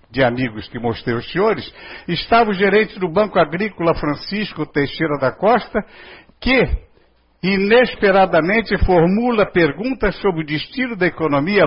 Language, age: Portuguese, 60-79